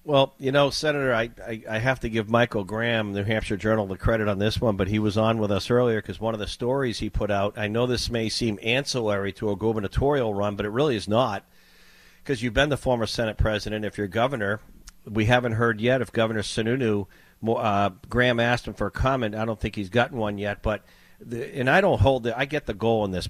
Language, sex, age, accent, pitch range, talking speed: English, male, 50-69, American, 100-120 Hz, 245 wpm